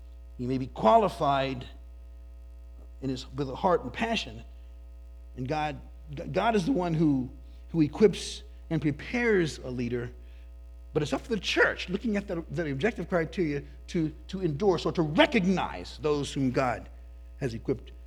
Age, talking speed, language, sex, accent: 50-69, 155 wpm, English, male, American